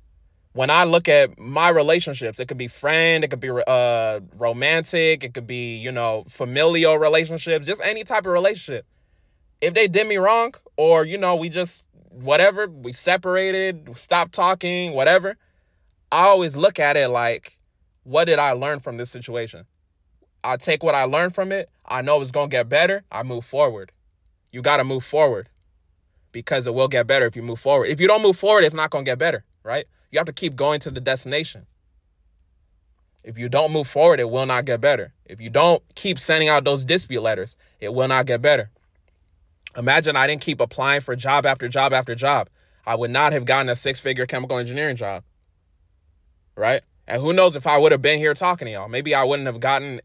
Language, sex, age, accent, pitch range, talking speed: English, male, 20-39, American, 115-160 Hz, 205 wpm